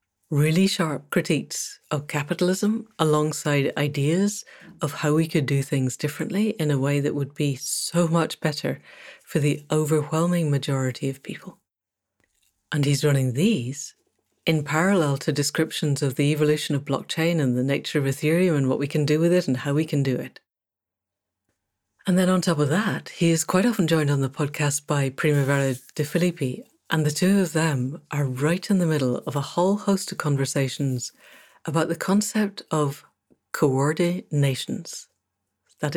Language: English